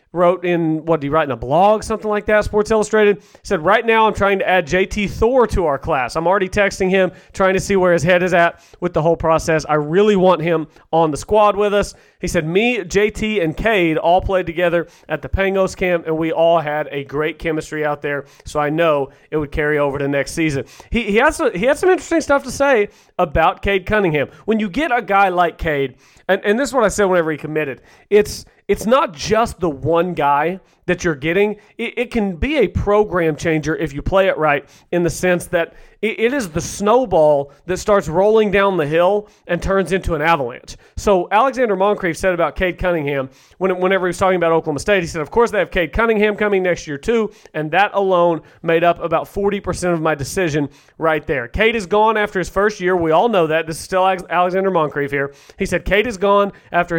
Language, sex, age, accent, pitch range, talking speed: English, male, 30-49, American, 160-205 Hz, 225 wpm